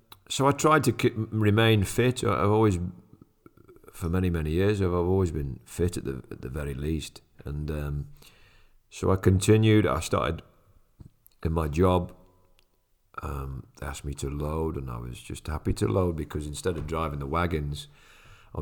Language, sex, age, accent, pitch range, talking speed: English, male, 40-59, British, 75-90 Hz, 170 wpm